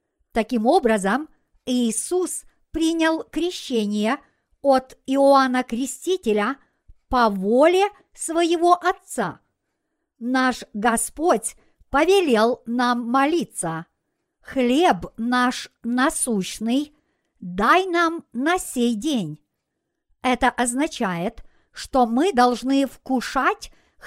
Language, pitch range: Russian, 235-310 Hz